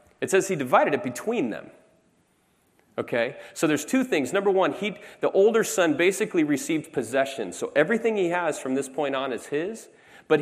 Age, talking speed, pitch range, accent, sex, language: 30-49, 185 wpm, 130-175 Hz, American, male, English